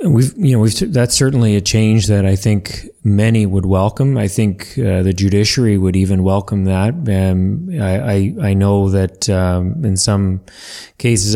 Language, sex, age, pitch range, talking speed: English, male, 30-49, 95-110 Hz, 175 wpm